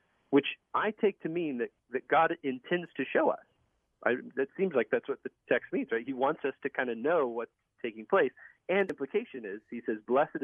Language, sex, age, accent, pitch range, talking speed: English, male, 40-59, American, 105-165 Hz, 220 wpm